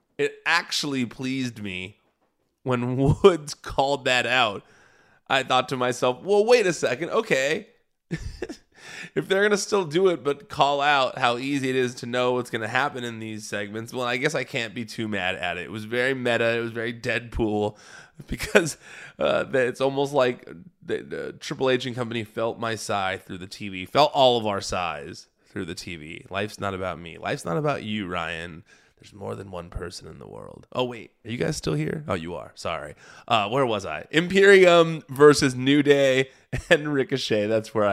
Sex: male